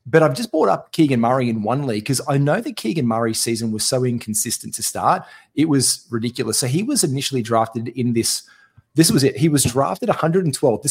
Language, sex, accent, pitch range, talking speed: English, male, Australian, 115-140 Hz, 215 wpm